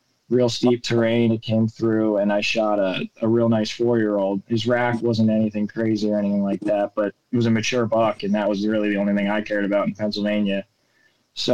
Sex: male